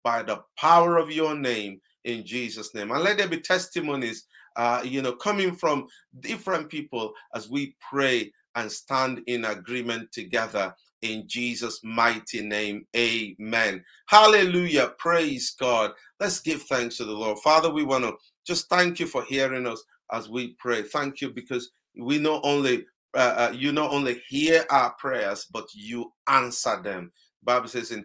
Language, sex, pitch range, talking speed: English, male, 115-150 Hz, 165 wpm